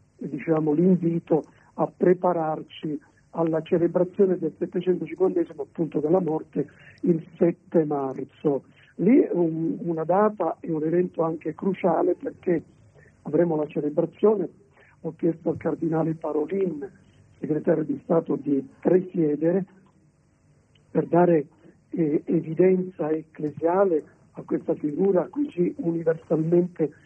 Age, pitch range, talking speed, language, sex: 50-69, 155-180 Hz, 105 wpm, Italian, male